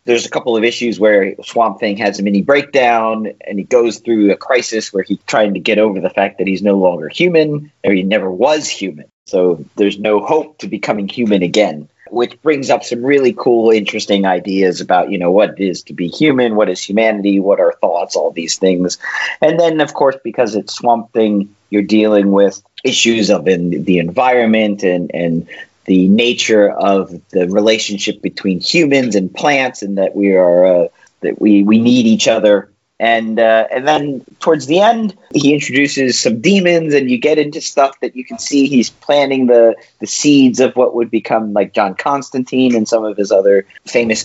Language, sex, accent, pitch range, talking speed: English, male, American, 100-130 Hz, 195 wpm